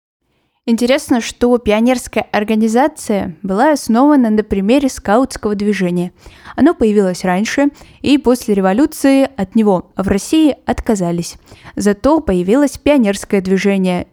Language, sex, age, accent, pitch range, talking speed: Russian, female, 10-29, native, 190-245 Hz, 105 wpm